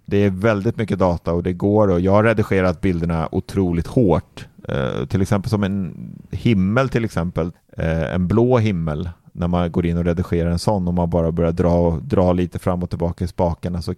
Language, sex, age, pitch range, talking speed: Swedish, male, 30-49, 85-105 Hz, 195 wpm